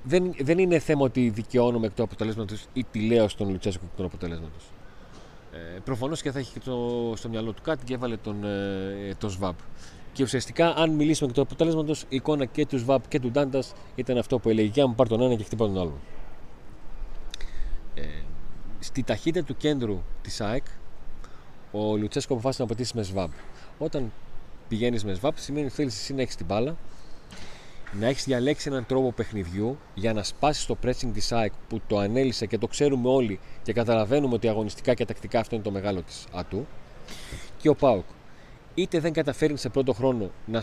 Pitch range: 105-140 Hz